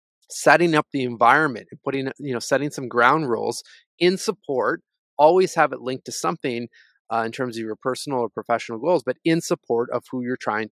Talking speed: 200 wpm